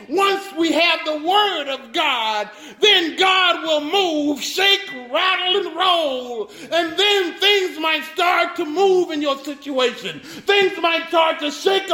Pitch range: 295-360 Hz